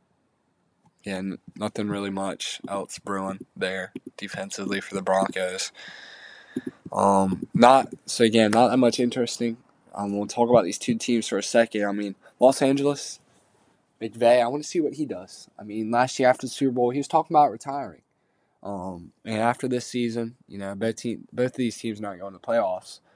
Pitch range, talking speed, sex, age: 100-125 Hz, 190 wpm, male, 10-29